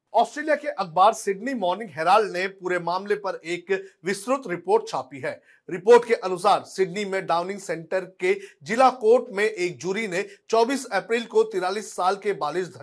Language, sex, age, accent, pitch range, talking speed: Hindi, male, 40-59, native, 175-225 Hz, 100 wpm